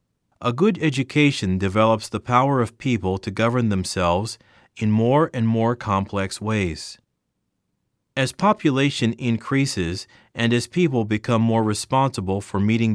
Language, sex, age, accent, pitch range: Korean, male, 40-59, American, 105-135 Hz